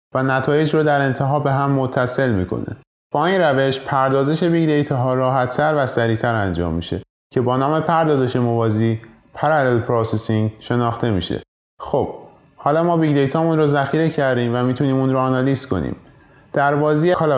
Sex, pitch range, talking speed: male, 120-145 Hz, 160 wpm